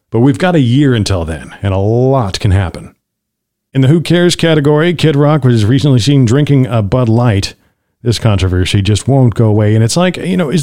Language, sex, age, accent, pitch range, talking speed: English, male, 50-69, American, 105-150 Hz, 215 wpm